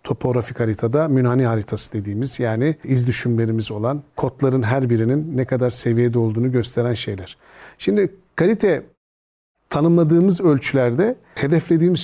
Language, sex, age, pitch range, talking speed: Turkish, male, 50-69, 120-160 Hz, 115 wpm